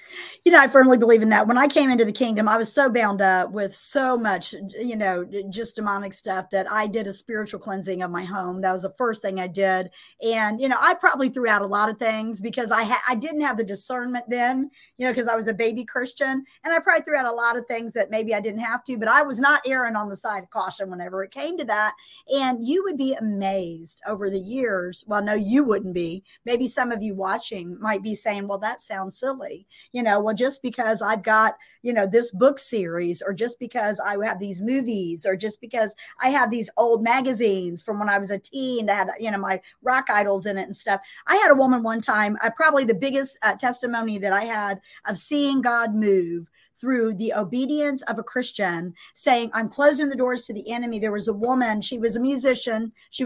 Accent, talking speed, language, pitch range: American, 240 wpm, English, 200-255 Hz